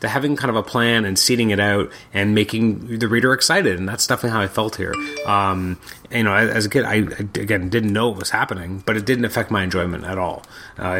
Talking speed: 240 wpm